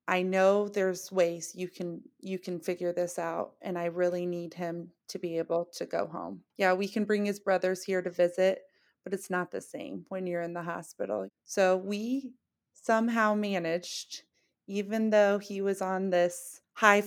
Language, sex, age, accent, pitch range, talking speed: English, female, 30-49, American, 175-205 Hz, 185 wpm